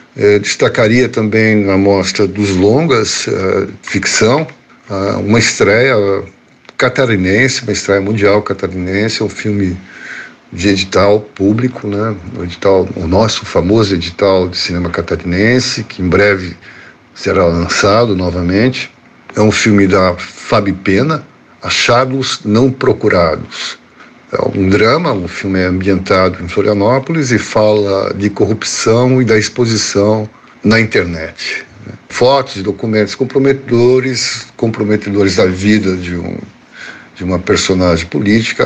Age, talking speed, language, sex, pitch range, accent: 60-79, 115 wpm, Portuguese, male, 95-115 Hz, Brazilian